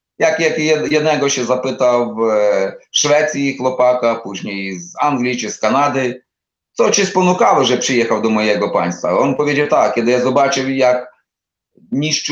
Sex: male